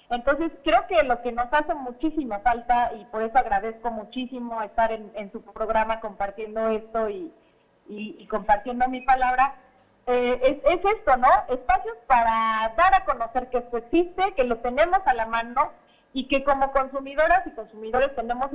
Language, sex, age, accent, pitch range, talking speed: Spanish, female, 30-49, Mexican, 230-295 Hz, 170 wpm